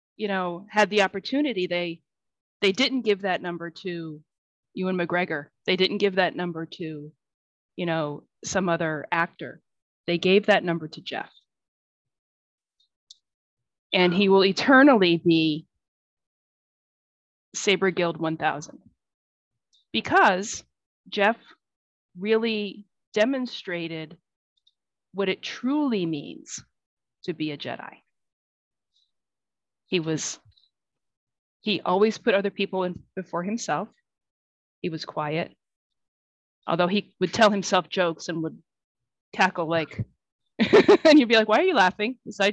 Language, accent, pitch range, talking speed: English, American, 165-205 Hz, 115 wpm